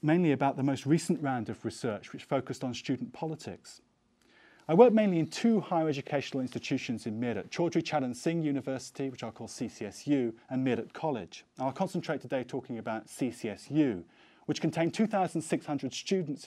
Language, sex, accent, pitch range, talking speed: English, male, British, 120-160 Hz, 155 wpm